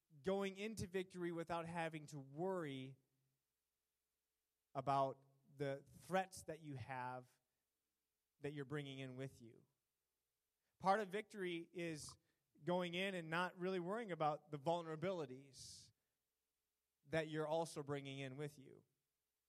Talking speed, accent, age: 120 wpm, American, 20-39